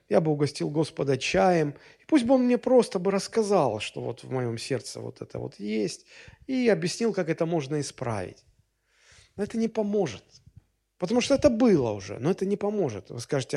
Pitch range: 130-205 Hz